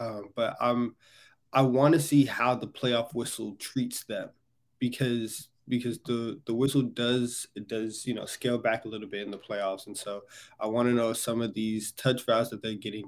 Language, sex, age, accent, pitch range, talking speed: English, male, 20-39, American, 110-130 Hz, 205 wpm